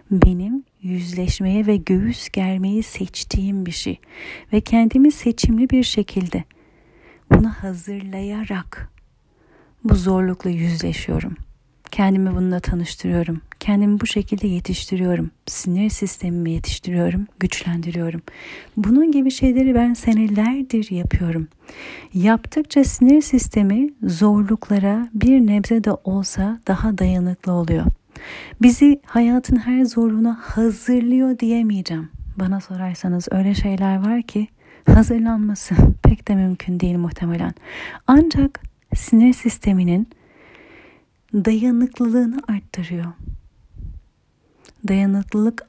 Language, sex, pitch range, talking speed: Turkish, female, 180-230 Hz, 90 wpm